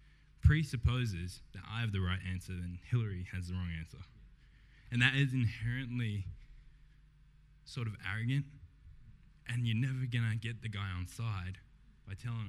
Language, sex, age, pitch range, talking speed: English, male, 10-29, 95-120 Hz, 155 wpm